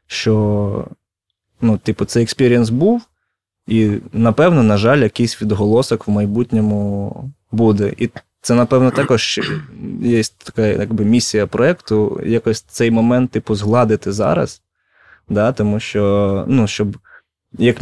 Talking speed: 120 wpm